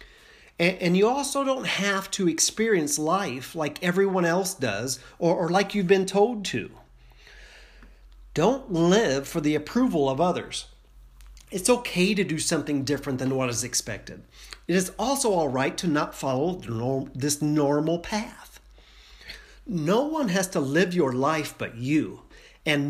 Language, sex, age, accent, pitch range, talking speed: English, male, 40-59, American, 125-180 Hz, 145 wpm